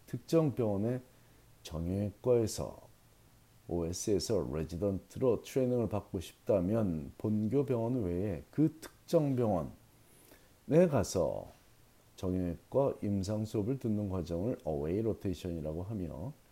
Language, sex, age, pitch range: Korean, male, 40-59, 95-125 Hz